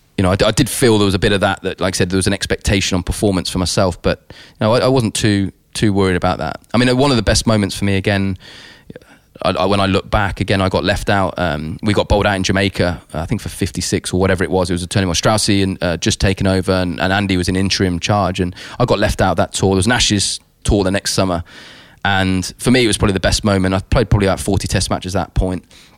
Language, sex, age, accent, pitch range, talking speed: English, male, 20-39, British, 95-105 Hz, 280 wpm